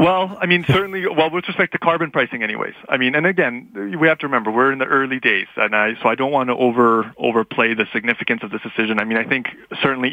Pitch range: 110-145 Hz